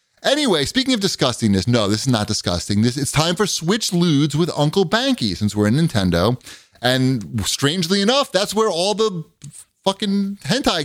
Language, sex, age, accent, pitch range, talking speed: English, male, 30-49, American, 110-160 Hz, 170 wpm